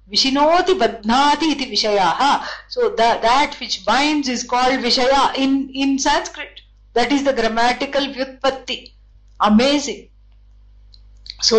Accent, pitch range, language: Indian, 225-285 Hz, English